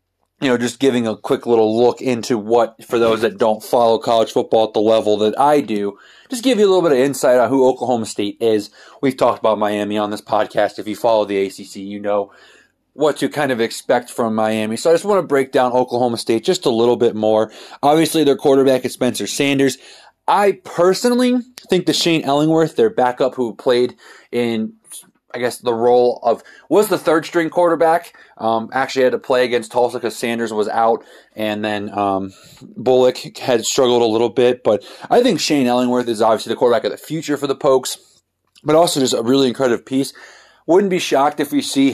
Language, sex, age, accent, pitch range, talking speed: English, male, 20-39, American, 115-145 Hz, 210 wpm